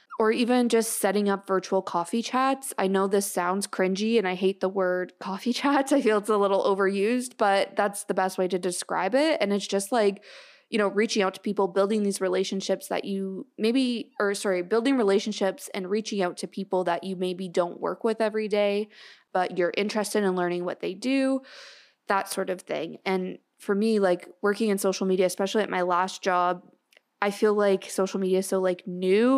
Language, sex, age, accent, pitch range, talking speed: English, female, 20-39, American, 190-220 Hz, 205 wpm